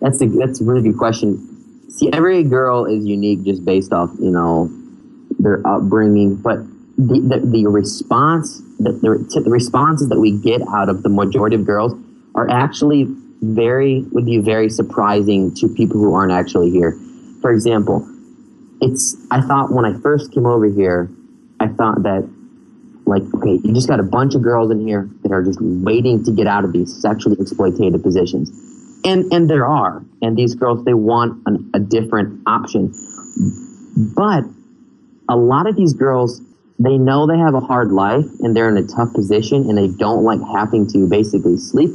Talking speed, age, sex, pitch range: 185 wpm, 20-39, male, 105-150 Hz